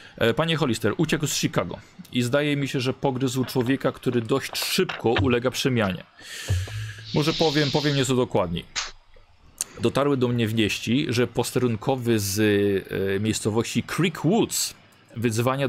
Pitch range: 120-155 Hz